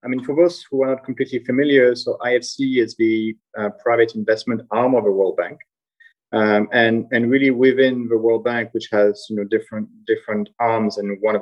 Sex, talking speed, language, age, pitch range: male, 205 wpm, English, 40-59, 110-130 Hz